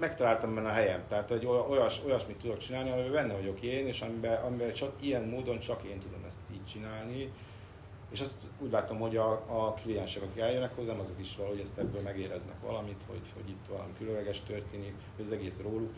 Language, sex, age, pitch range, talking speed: Hungarian, male, 30-49, 100-120 Hz, 190 wpm